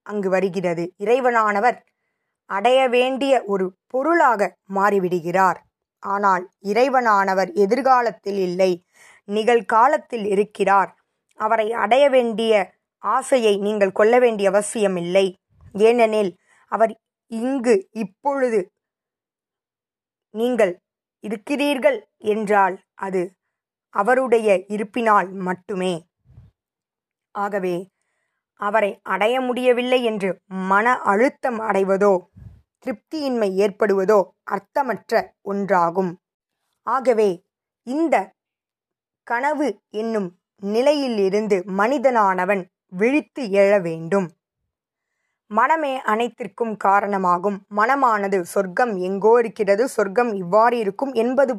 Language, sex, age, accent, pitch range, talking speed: Tamil, female, 20-39, native, 195-240 Hz, 80 wpm